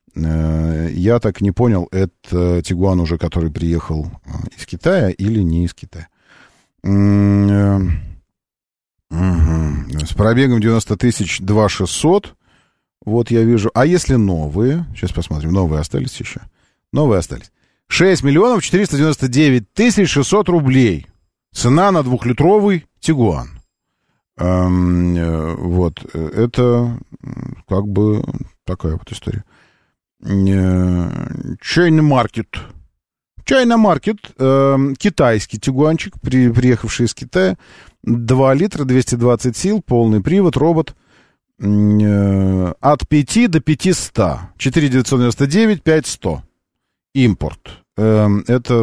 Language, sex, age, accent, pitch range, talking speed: Russian, male, 40-59, native, 90-135 Hz, 95 wpm